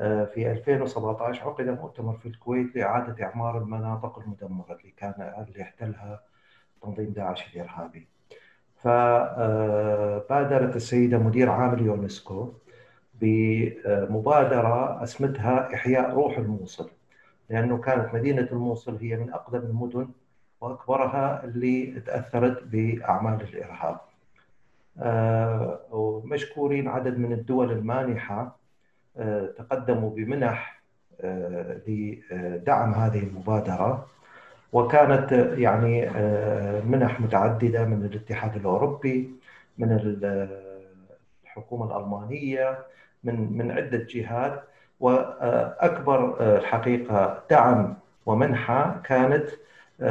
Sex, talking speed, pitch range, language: male, 85 wpm, 105-125 Hz, Arabic